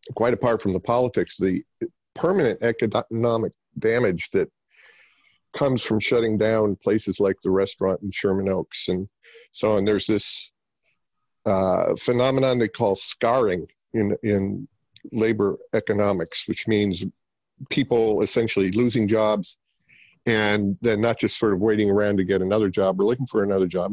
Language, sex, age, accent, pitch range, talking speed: English, male, 50-69, American, 100-115 Hz, 145 wpm